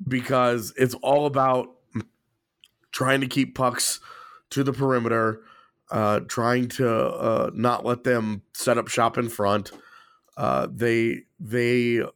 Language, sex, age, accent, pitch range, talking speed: English, male, 30-49, American, 115-140 Hz, 130 wpm